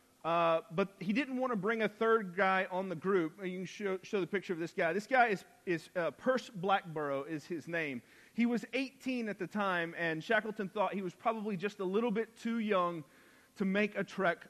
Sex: male